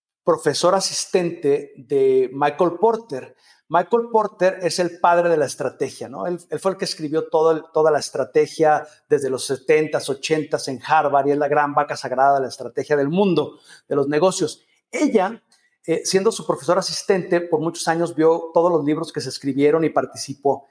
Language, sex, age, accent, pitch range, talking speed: Spanish, male, 50-69, Mexican, 150-190 Hz, 185 wpm